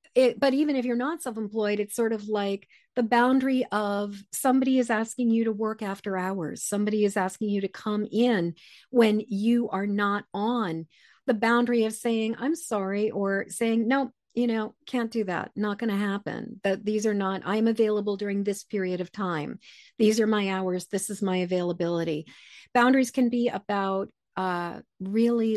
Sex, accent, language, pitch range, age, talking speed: female, American, English, 190-235 Hz, 40-59, 180 wpm